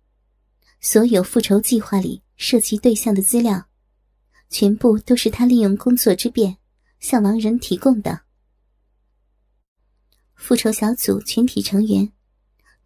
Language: Chinese